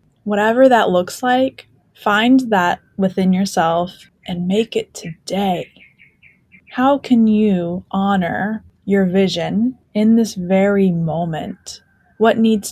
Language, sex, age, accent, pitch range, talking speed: English, female, 10-29, American, 180-220 Hz, 115 wpm